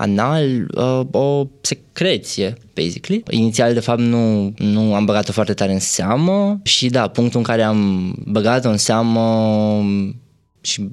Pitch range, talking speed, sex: 100-120 Hz, 135 wpm, male